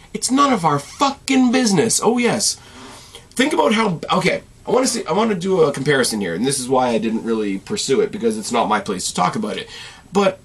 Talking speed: 240 wpm